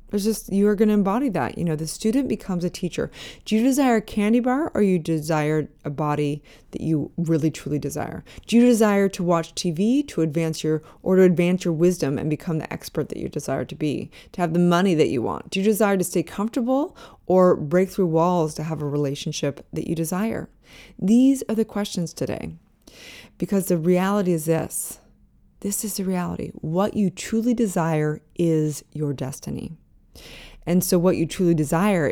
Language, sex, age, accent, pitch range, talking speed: English, female, 20-39, American, 155-200 Hz, 195 wpm